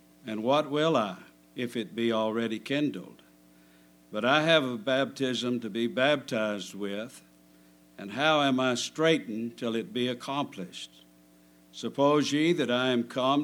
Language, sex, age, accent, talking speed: English, male, 60-79, American, 145 wpm